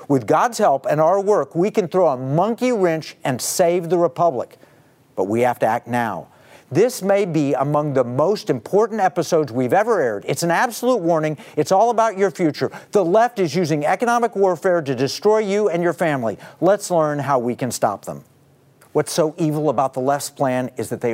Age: 50-69